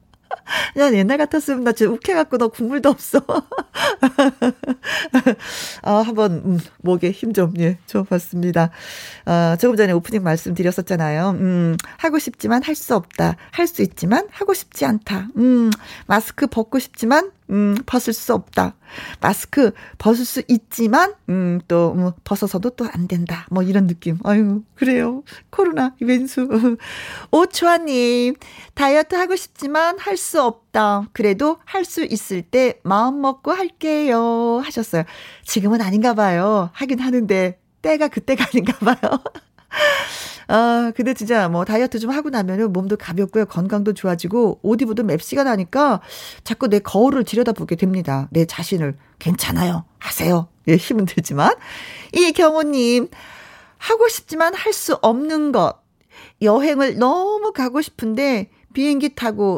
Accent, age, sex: native, 40-59, female